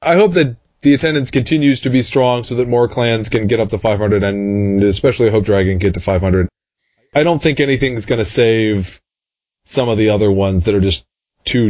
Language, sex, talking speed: English, male, 220 wpm